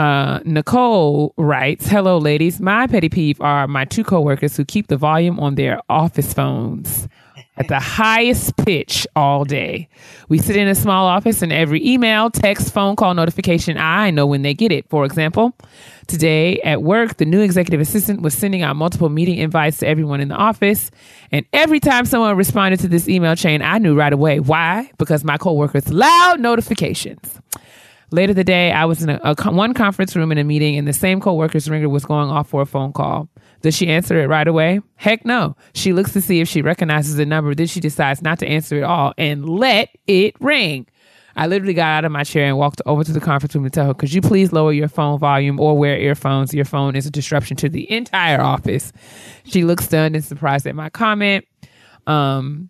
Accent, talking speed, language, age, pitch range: American, 210 wpm, English, 30-49, 145-190 Hz